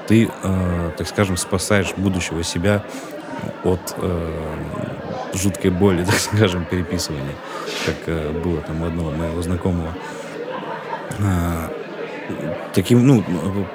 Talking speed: 85 wpm